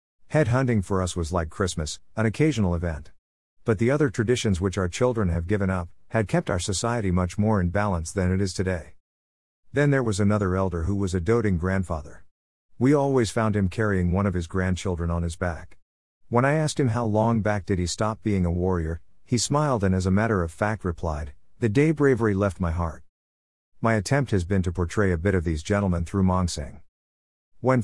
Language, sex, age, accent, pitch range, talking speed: English, male, 50-69, American, 85-115 Hz, 205 wpm